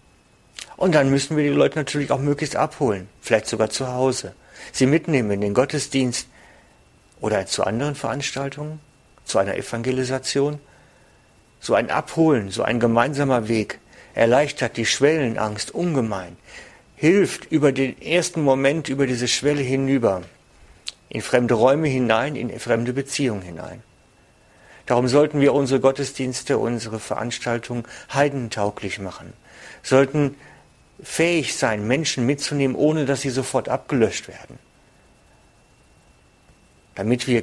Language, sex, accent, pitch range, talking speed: German, male, German, 110-140 Hz, 120 wpm